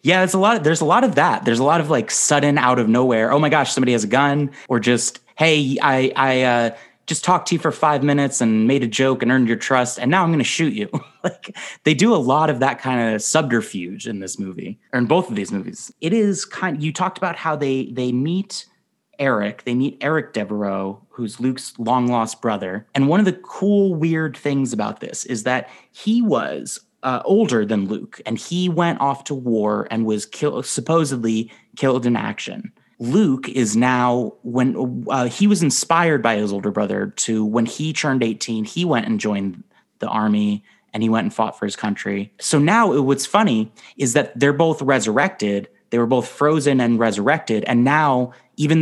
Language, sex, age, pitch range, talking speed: English, male, 30-49, 115-160 Hz, 210 wpm